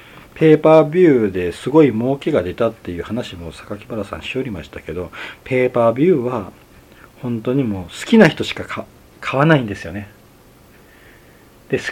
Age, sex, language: 40-59, male, Japanese